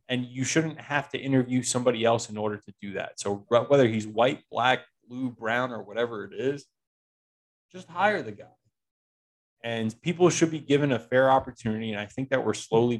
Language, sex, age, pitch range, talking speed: English, male, 20-39, 110-145 Hz, 195 wpm